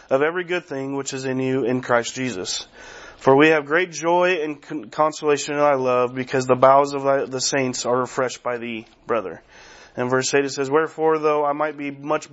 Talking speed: 210 wpm